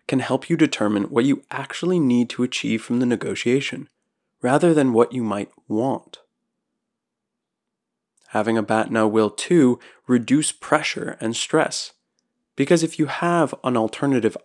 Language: English